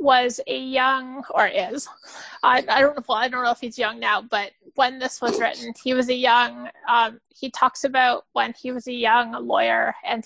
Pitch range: 235-275 Hz